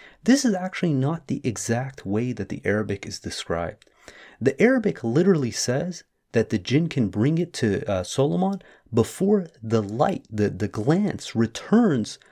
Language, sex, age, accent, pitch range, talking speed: English, male, 30-49, American, 110-185 Hz, 155 wpm